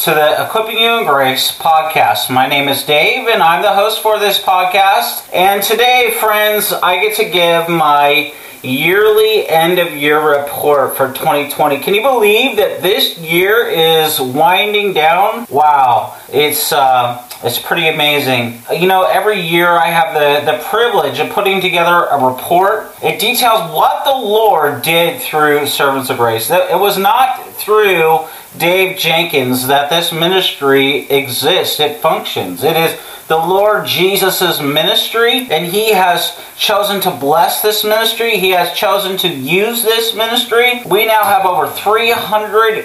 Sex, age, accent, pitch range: male, 40-59, American, 160-220 Hz